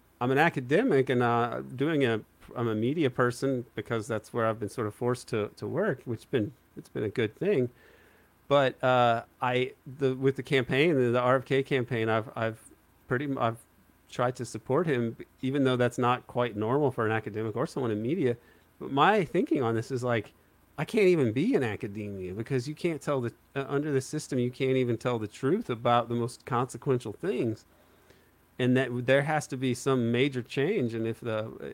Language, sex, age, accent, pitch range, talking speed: English, male, 40-59, American, 115-130 Hz, 200 wpm